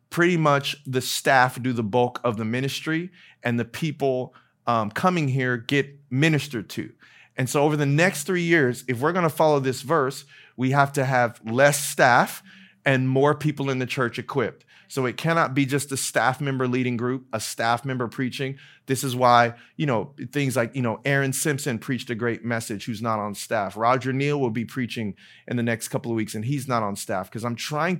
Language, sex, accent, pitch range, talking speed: English, male, American, 120-145 Hz, 210 wpm